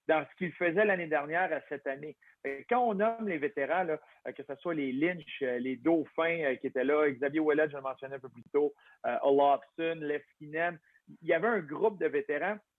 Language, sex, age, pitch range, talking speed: French, male, 50-69, 140-180 Hz, 200 wpm